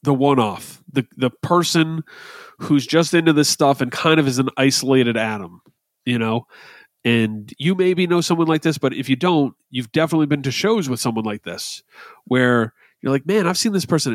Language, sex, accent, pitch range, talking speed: English, male, American, 120-150 Hz, 200 wpm